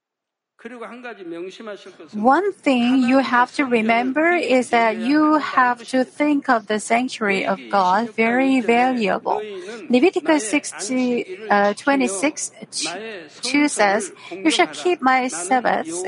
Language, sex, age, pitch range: Korean, female, 40-59, 215-285 Hz